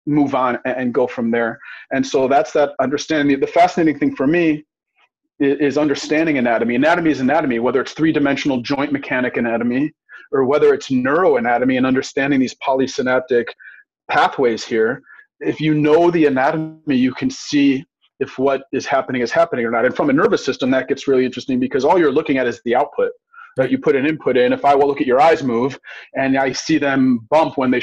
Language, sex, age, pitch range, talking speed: English, male, 30-49, 130-170 Hz, 200 wpm